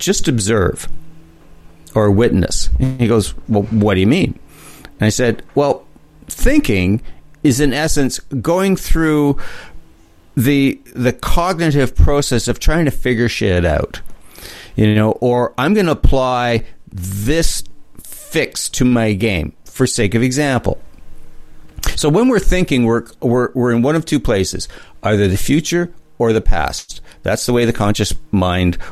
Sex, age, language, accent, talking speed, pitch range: male, 50-69, English, American, 145 wpm, 95-140 Hz